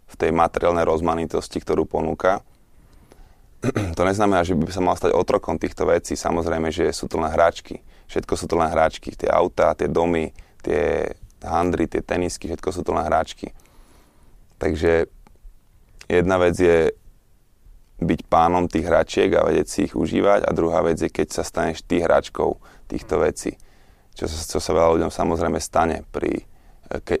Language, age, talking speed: Slovak, 20-39, 160 wpm